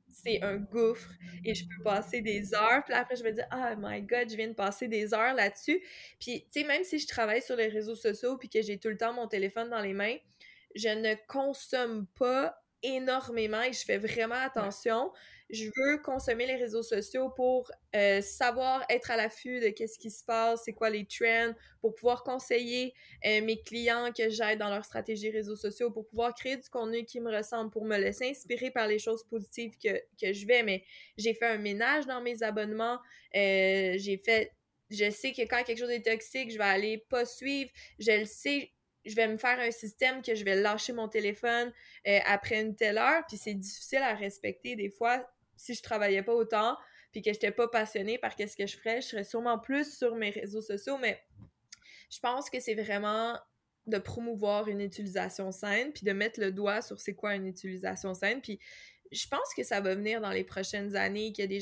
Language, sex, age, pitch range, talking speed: French, female, 20-39, 205-240 Hz, 215 wpm